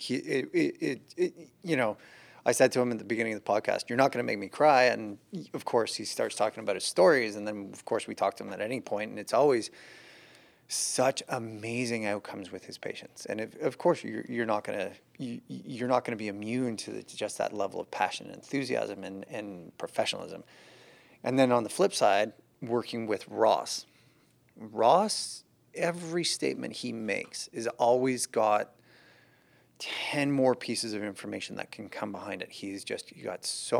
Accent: American